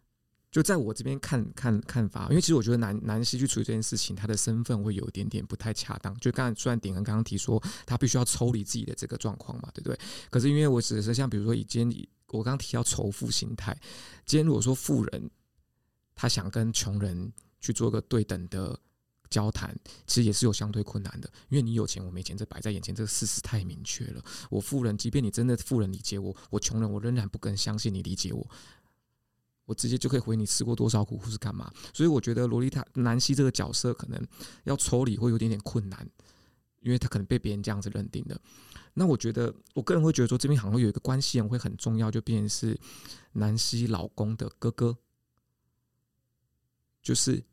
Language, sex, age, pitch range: Chinese, male, 20-39, 105-125 Hz